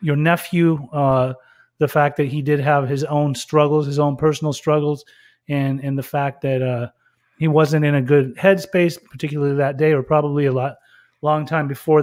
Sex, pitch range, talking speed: male, 140-165 Hz, 190 wpm